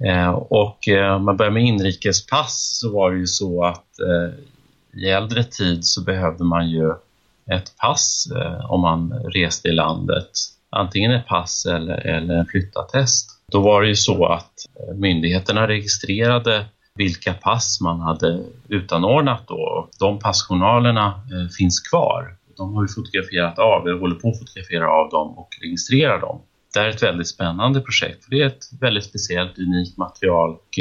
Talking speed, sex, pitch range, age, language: 155 wpm, male, 85-105 Hz, 30-49, Swedish